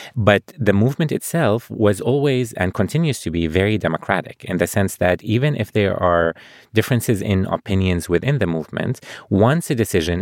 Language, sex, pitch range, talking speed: English, male, 80-105 Hz, 170 wpm